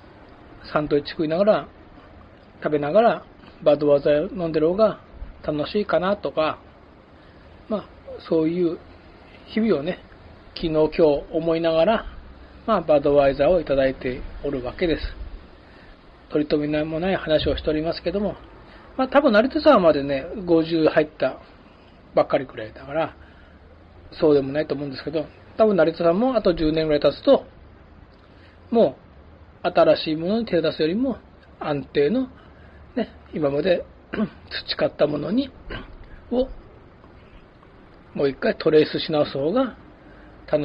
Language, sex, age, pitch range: Japanese, male, 40-59, 140-180 Hz